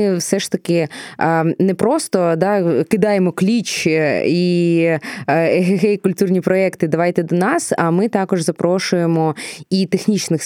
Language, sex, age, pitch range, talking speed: Ukrainian, female, 20-39, 165-195 Hz, 140 wpm